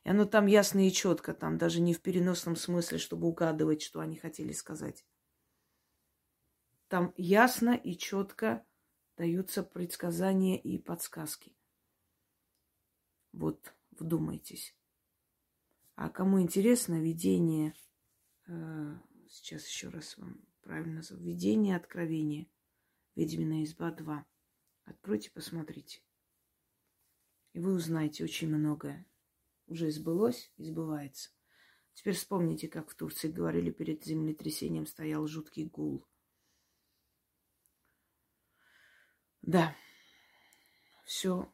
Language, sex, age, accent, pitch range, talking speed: Russian, female, 30-49, native, 105-175 Hz, 95 wpm